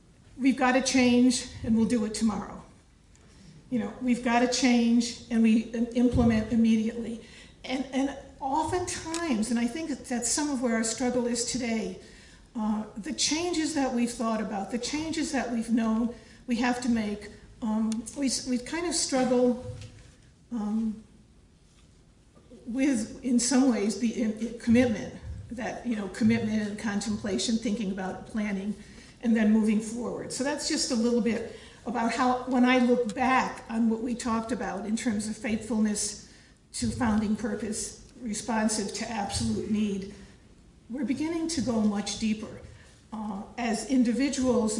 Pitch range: 220-255 Hz